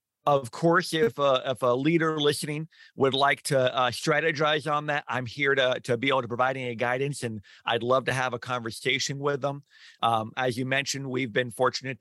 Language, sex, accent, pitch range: English, male, American, 120-140 Hz